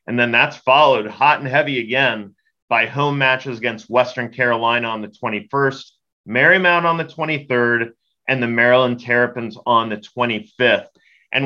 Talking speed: 150 wpm